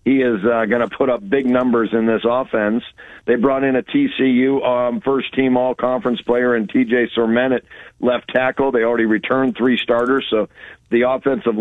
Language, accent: English, American